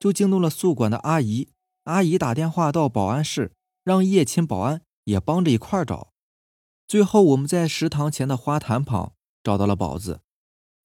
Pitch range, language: 105-170 Hz, Chinese